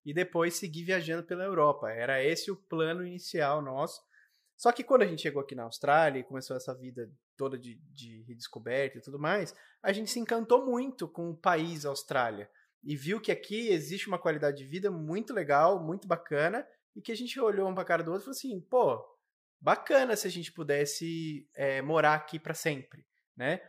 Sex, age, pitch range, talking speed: male, 20-39, 150-205 Hz, 200 wpm